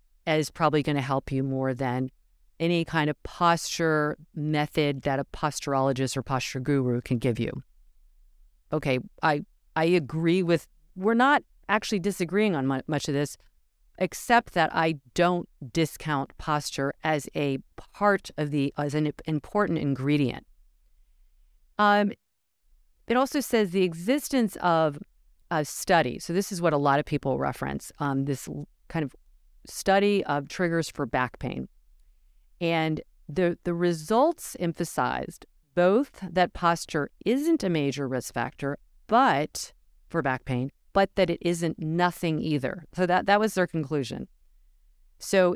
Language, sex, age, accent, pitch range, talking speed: English, female, 40-59, American, 135-180 Hz, 140 wpm